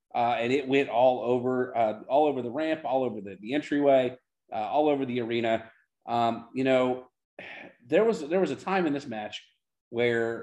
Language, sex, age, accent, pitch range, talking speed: English, male, 30-49, American, 115-155 Hz, 195 wpm